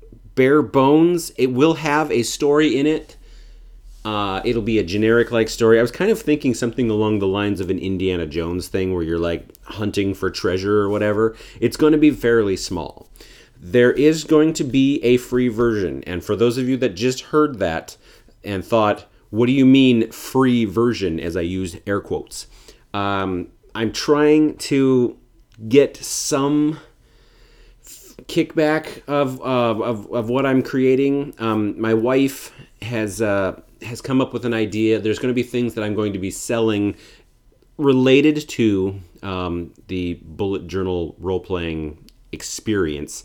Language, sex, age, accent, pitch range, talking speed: English, male, 30-49, American, 100-130 Hz, 165 wpm